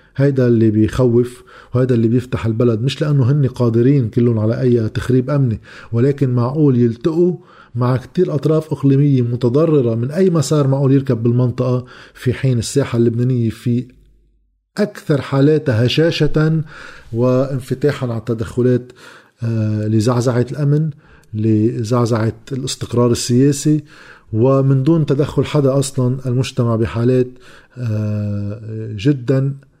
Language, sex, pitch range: Arabic, male, 115-140 Hz